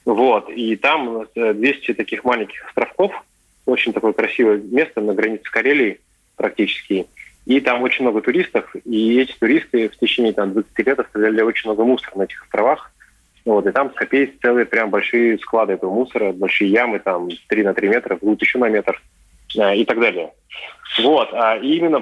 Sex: male